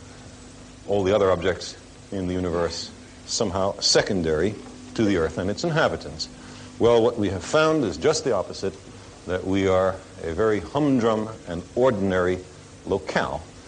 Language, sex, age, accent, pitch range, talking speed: English, male, 60-79, American, 95-125 Hz, 145 wpm